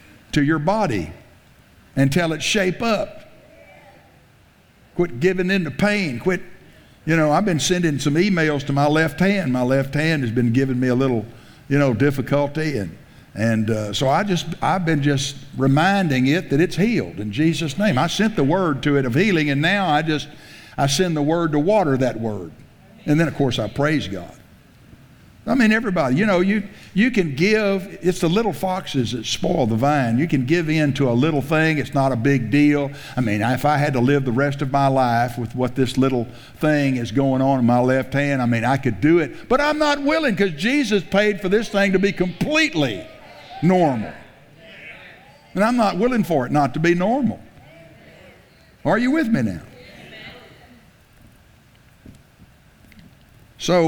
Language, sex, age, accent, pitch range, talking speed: English, male, 60-79, American, 130-185 Hz, 190 wpm